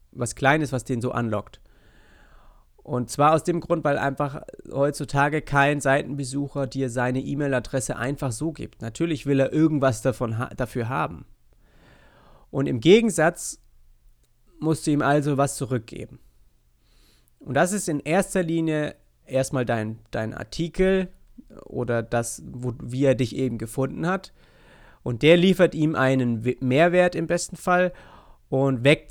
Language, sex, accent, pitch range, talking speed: German, male, German, 125-155 Hz, 135 wpm